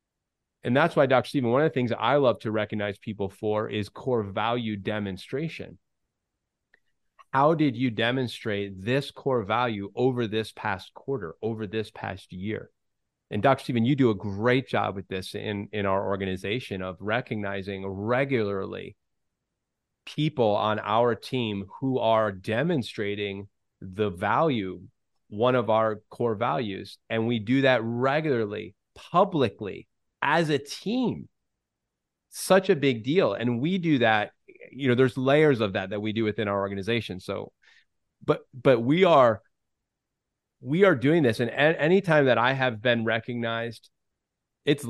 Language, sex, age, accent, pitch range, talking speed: English, male, 30-49, American, 105-135 Hz, 150 wpm